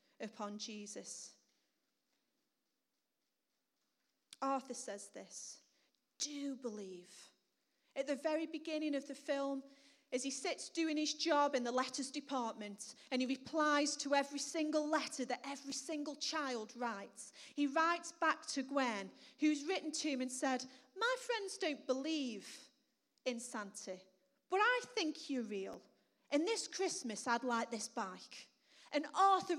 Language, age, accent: English, 30-49, British